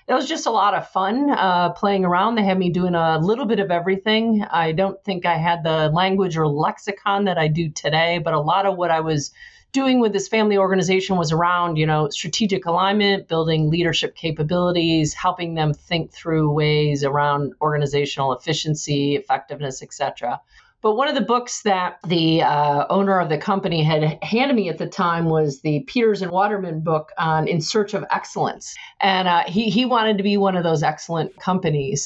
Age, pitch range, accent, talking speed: 40-59, 155-200 Hz, American, 195 wpm